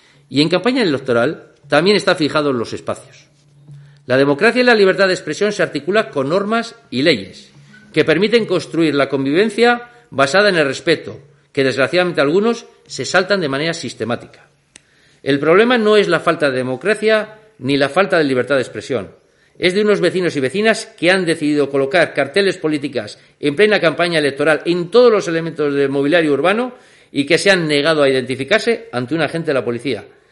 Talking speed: 180 wpm